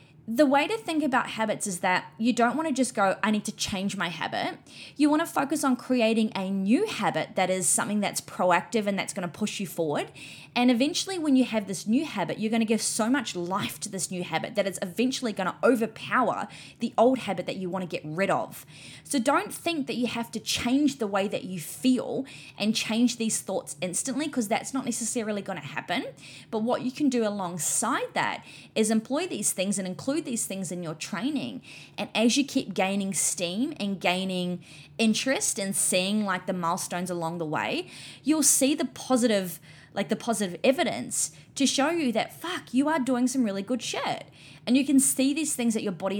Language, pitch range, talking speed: English, 185-255 Hz, 215 wpm